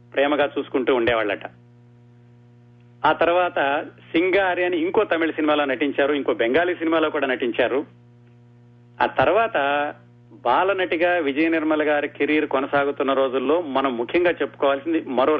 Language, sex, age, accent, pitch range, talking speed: Telugu, male, 30-49, native, 120-160 Hz, 115 wpm